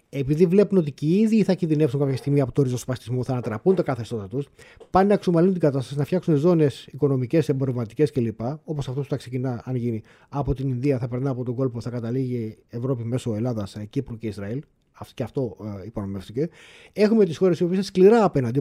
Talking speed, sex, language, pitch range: 215 wpm, male, Greek, 130-180 Hz